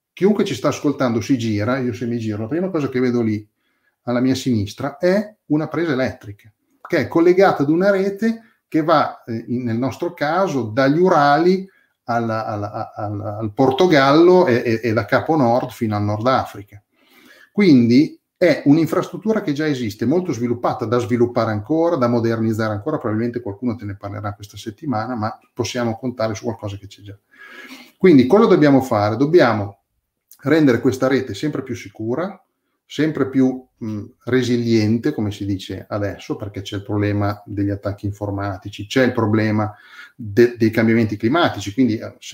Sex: male